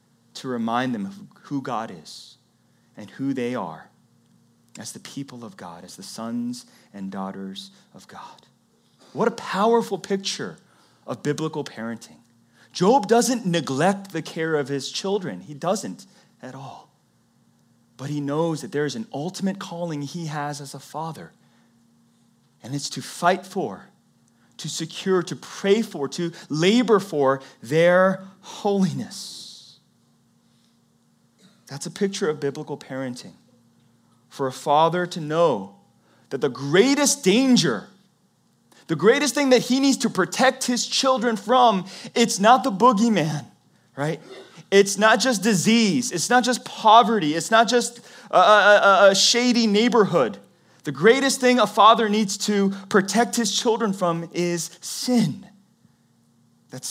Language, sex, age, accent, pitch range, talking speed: English, male, 30-49, American, 140-220 Hz, 140 wpm